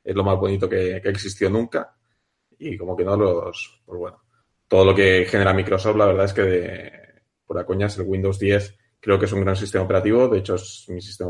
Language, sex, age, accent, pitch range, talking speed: Spanish, male, 20-39, Spanish, 95-110 Hz, 230 wpm